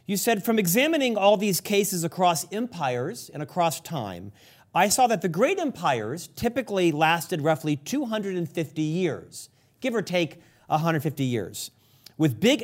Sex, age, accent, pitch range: male, 40-59, American, 145-180 Hz